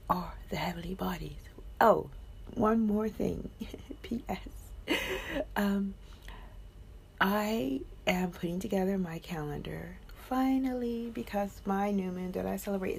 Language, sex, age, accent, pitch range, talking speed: English, female, 50-69, American, 125-200 Hz, 110 wpm